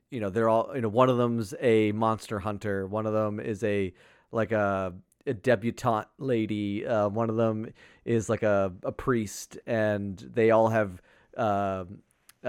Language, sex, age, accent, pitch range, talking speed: English, male, 30-49, American, 100-120 Hz, 175 wpm